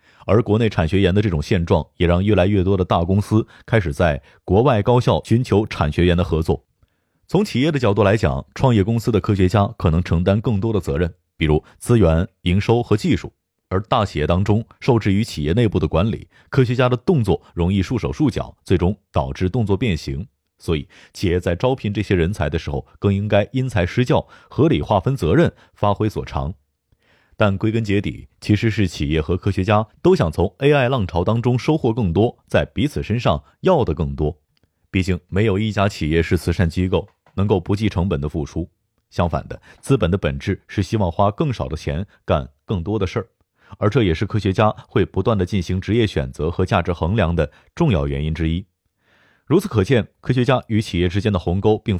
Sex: male